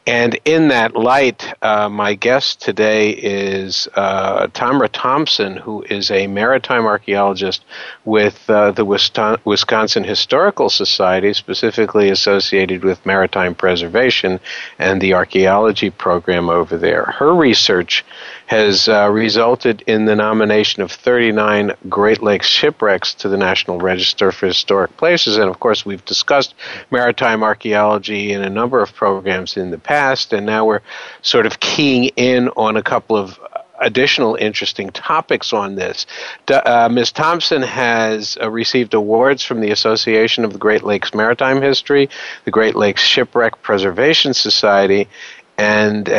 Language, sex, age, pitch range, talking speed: English, male, 50-69, 100-120 Hz, 140 wpm